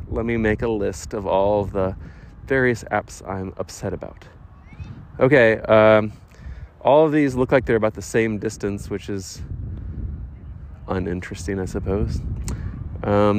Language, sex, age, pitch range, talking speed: English, male, 30-49, 90-115 Hz, 140 wpm